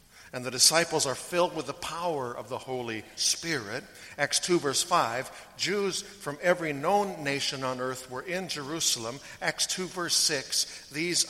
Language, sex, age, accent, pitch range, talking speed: English, male, 60-79, American, 120-150 Hz, 165 wpm